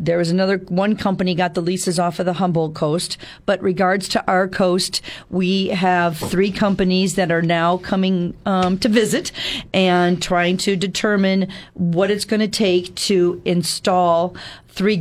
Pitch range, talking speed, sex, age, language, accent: 175-205 Hz, 165 wpm, female, 50-69, English, American